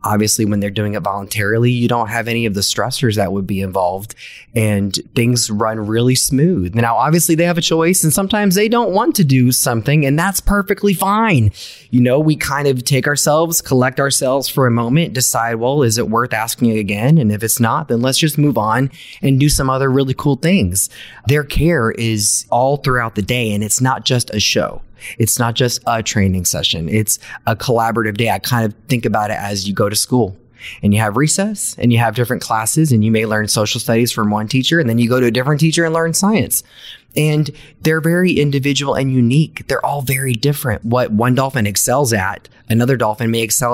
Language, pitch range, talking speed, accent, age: English, 105-140 Hz, 215 wpm, American, 20-39